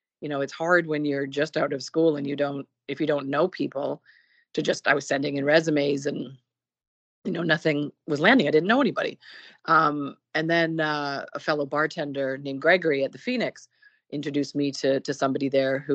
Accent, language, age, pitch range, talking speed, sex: American, English, 30-49, 135-160 Hz, 205 wpm, female